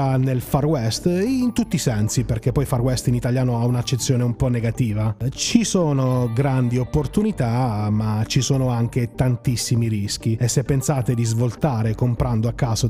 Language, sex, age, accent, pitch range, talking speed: Italian, male, 30-49, native, 120-150 Hz, 165 wpm